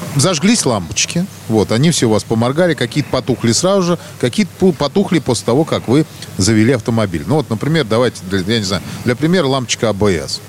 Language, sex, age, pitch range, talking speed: Russian, male, 40-59, 115-155 Hz, 185 wpm